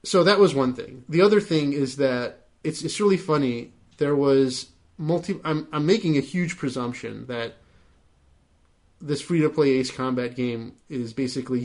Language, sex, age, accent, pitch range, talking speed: English, male, 30-49, American, 120-150 Hz, 170 wpm